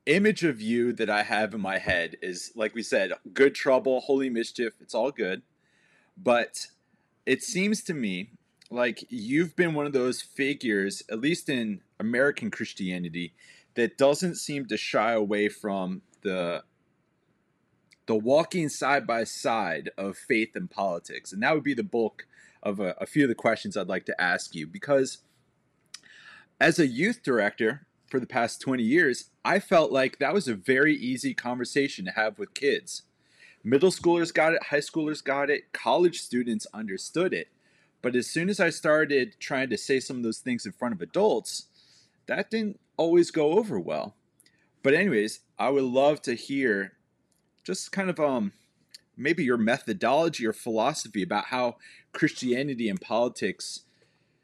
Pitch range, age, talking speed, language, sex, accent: 115-165 Hz, 30-49, 165 wpm, English, male, American